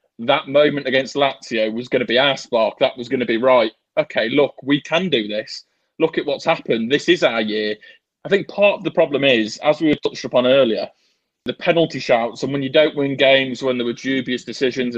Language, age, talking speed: English, 20-39, 230 wpm